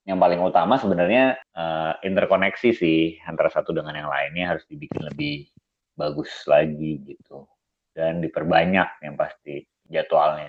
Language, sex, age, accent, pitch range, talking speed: Indonesian, male, 30-49, native, 80-105 Hz, 130 wpm